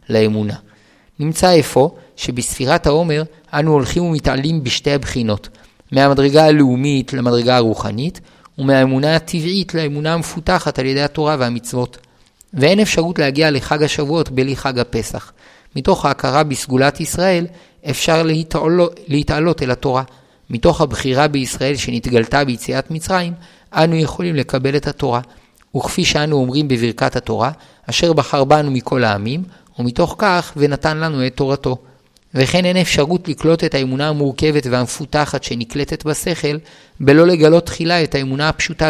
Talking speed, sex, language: 125 wpm, male, Hebrew